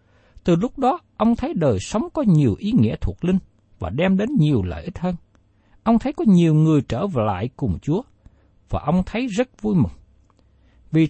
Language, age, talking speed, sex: Vietnamese, 60-79, 195 wpm, male